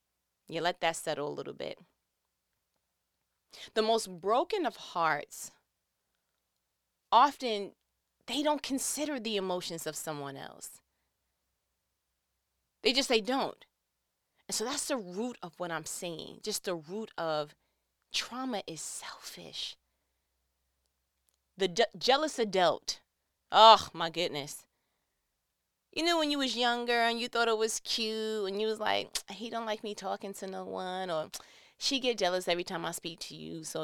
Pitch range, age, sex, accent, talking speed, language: 160-235 Hz, 20-39, female, American, 145 wpm, English